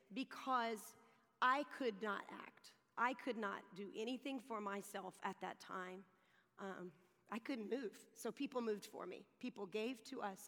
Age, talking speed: 40-59, 160 wpm